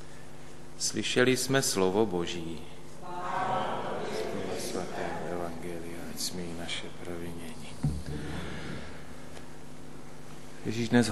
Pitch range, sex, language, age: 90-115 Hz, male, Slovak, 30-49